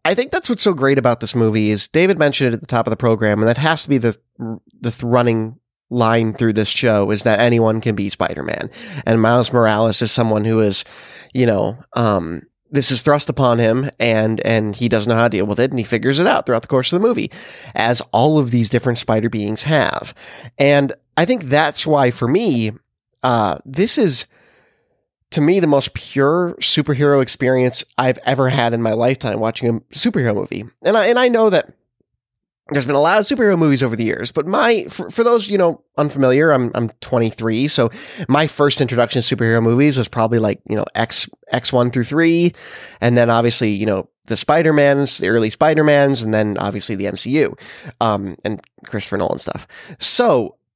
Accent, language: American, English